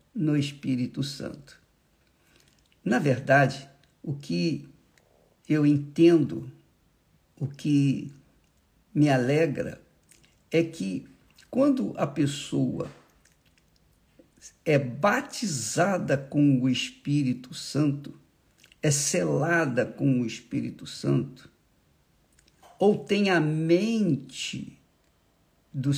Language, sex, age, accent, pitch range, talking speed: Portuguese, male, 60-79, Brazilian, 135-175 Hz, 80 wpm